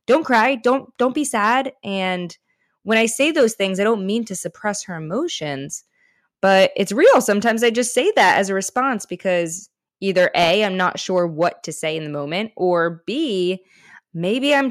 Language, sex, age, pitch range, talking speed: English, female, 20-39, 175-225 Hz, 190 wpm